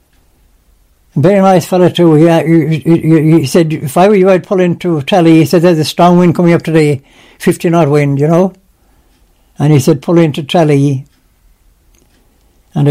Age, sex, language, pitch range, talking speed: 60-79, male, English, 145-170 Hz, 170 wpm